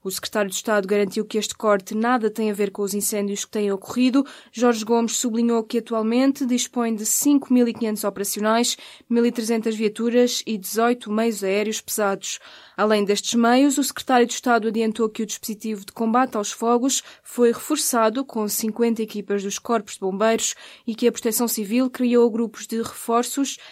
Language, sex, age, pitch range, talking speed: Portuguese, female, 20-39, 205-240 Hz, 170 wpm